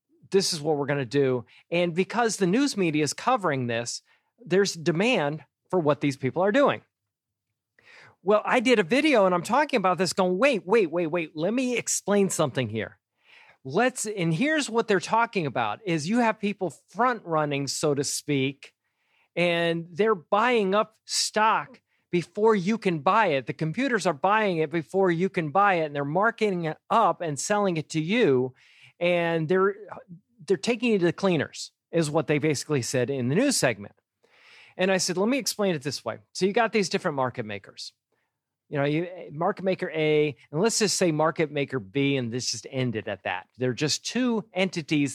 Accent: American